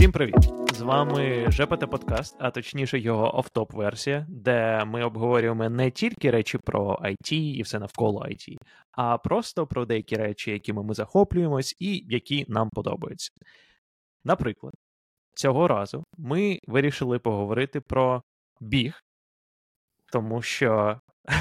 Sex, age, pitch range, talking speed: male, 20-39, 110-145 Hz, 125 wpm